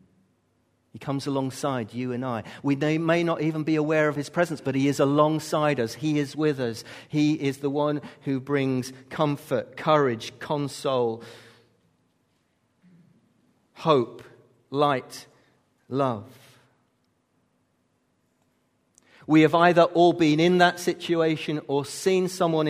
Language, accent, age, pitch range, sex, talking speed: English, British, 40-59, 130-160 Hz, male, 125 wpm